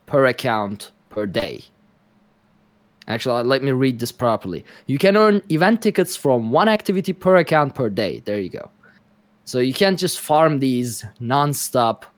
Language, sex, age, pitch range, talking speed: English, male, 20-39, 120-185 Hz, 160 wpm